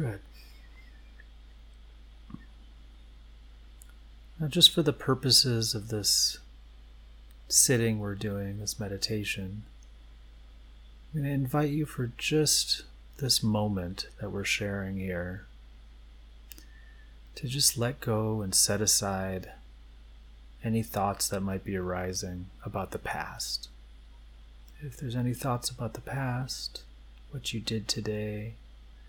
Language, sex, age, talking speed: English, male, 30-49, 110 wpm